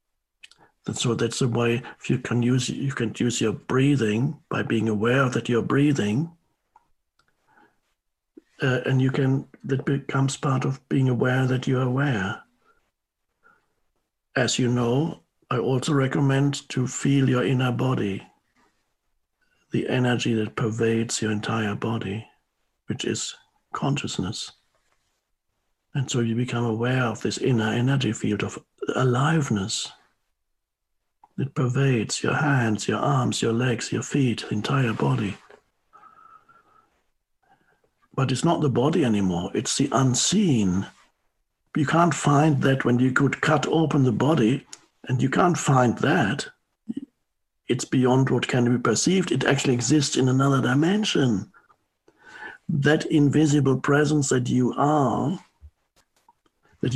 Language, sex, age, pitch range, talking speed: English, male, 60-79, 120-145 Hz, 125 wpm